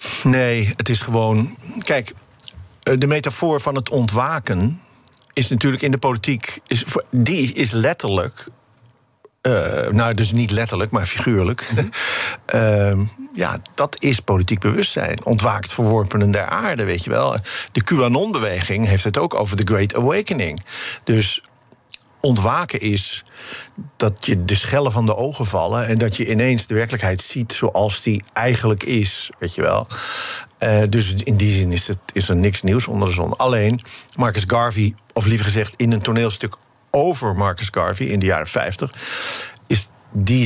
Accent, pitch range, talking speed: Dutch, 105-125 Hz, 150 wpm